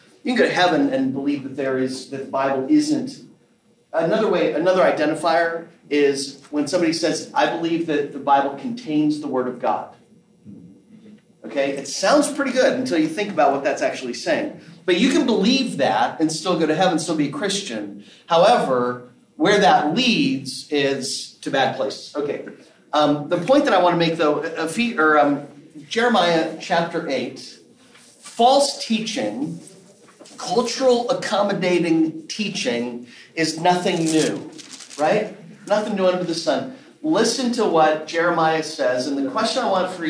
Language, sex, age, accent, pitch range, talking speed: English, male, 30-49, American, 145-220 Hz, 165 wpm